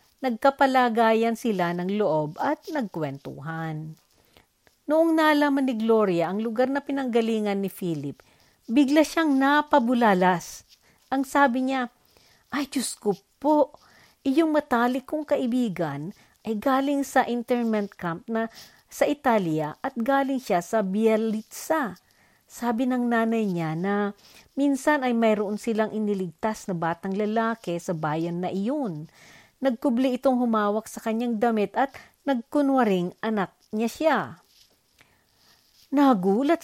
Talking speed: 120 wpm